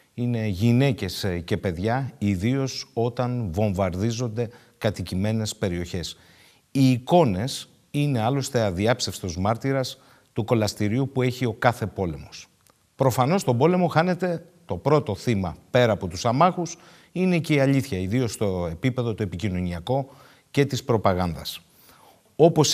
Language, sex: Greek, male